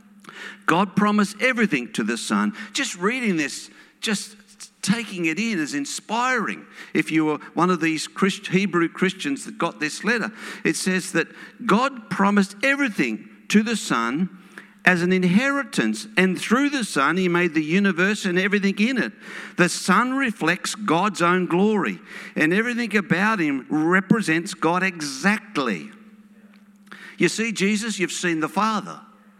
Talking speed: 145 wpm